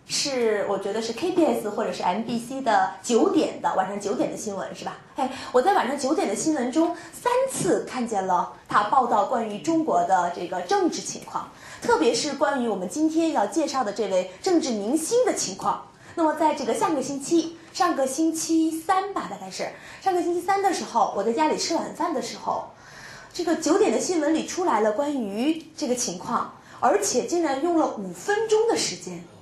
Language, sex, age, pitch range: Korean, female, 20-39, 225-340 Hz